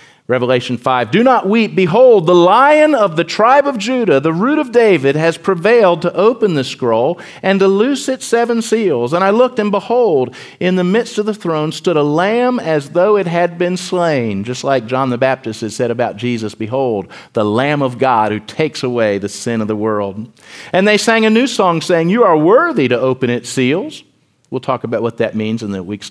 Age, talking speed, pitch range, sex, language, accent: 50-69, 215 wpm, 120-190 Hz, male, English, American